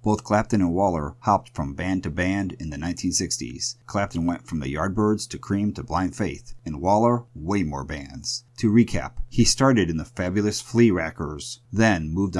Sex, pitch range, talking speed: male, 85-110 Hz, 185 wpm